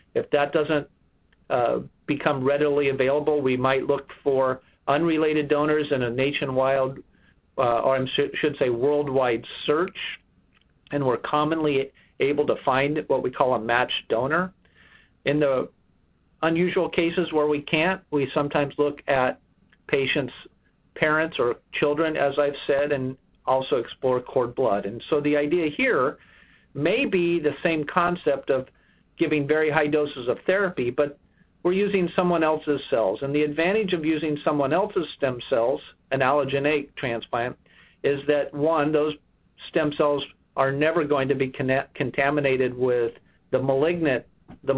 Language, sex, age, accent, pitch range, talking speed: English, male, 50-69, American, 135-160 Hz, 145 wpm